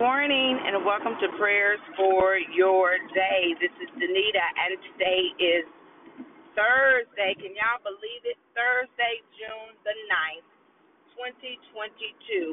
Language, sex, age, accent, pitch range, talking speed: English, female, 40-59, American, 190-315 Hz, 120 wpm